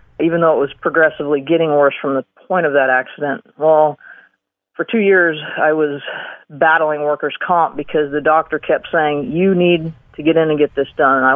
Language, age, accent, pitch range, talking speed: English, 40-59, American, 145-170 Hz, 200 wpm